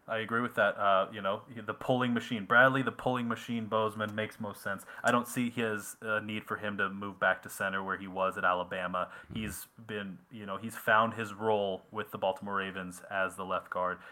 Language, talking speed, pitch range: English, 220 wpm, 100-115 Hz